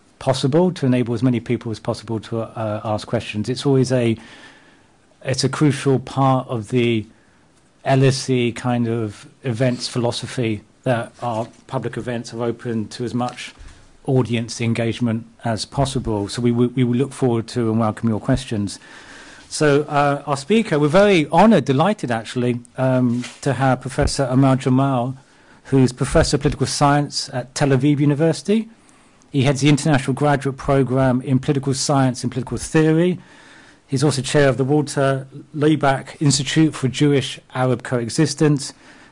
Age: 40-59